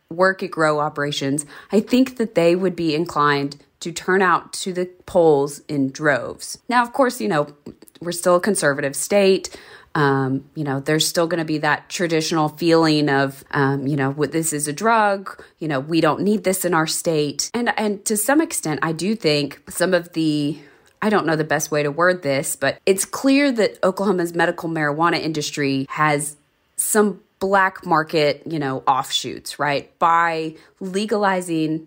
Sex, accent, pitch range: female, American, 150-190 Hz